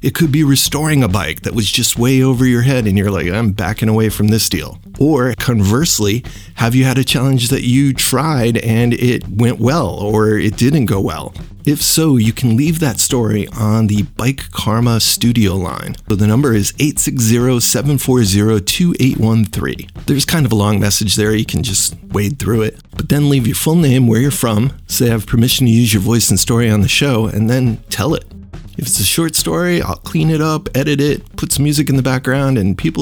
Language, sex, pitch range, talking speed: English, male, 105-135 Hz, 215 wpm